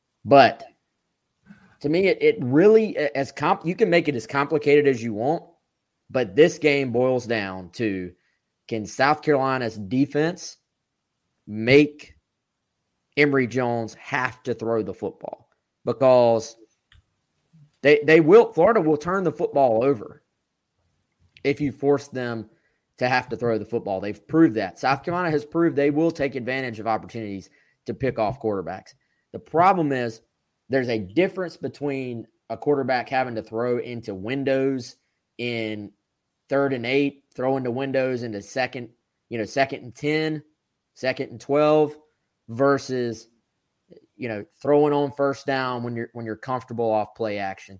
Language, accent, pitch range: English, American, 115-140 Hz